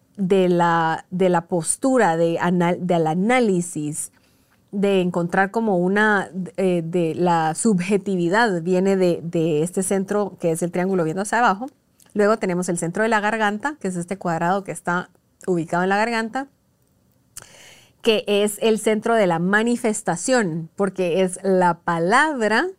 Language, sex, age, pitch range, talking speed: Spanish, female, 30-49, 175-210 Hz, 145 wpm